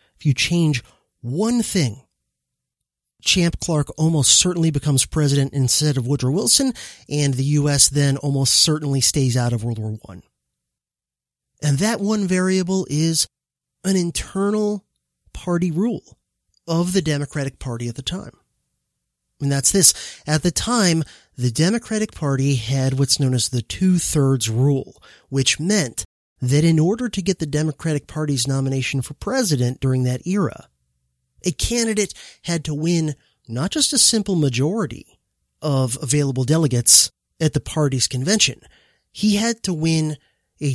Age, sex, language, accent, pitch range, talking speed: 30-49, male, English, American, 130-170 Hz, 140 wpm